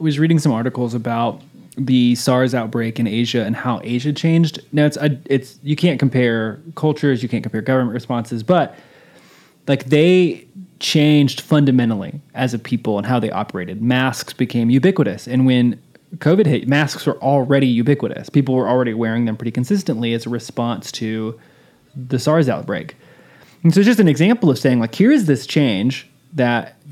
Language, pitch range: English, 120-150 Hz